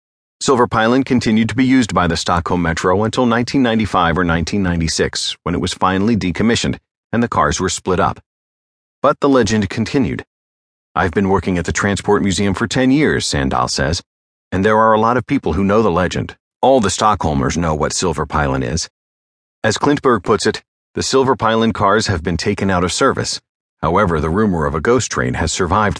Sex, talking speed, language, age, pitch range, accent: male, 190 wpm, English, 40-59, 85-115 Hz, American